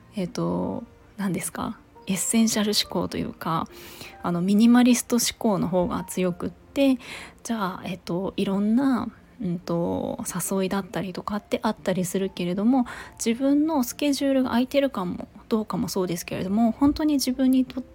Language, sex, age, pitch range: Japanese, female, 20-39, 190-255 Hz